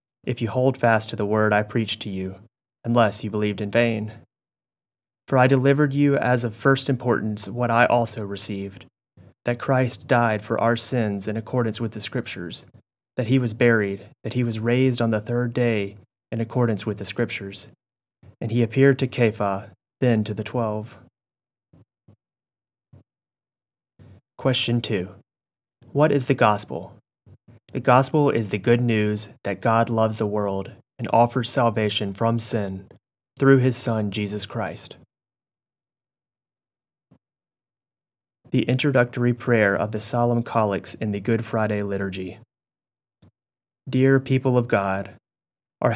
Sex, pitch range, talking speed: male, 105-125 Hz, 140 wpm